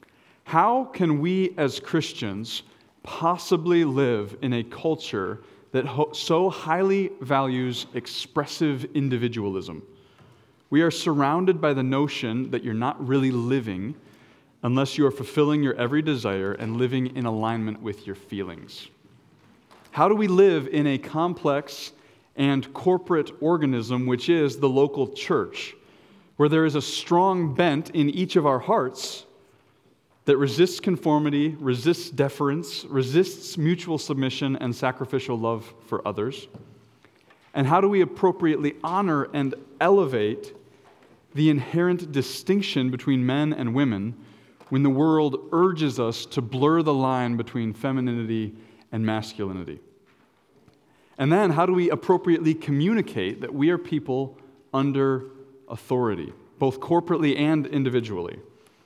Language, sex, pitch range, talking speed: English, male, 125-165 Hz, 125 wpm